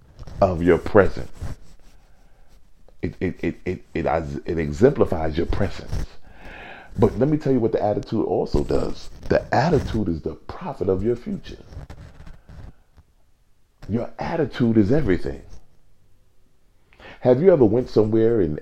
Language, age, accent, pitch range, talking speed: English, 40-59, American, 80-105 Hz, 130 wpm